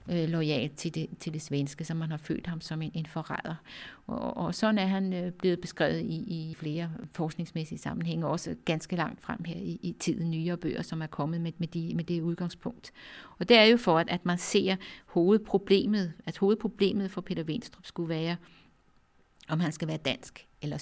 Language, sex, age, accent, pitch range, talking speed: Danish, female, 50-69, native, 160-190 Hz, 200 wpm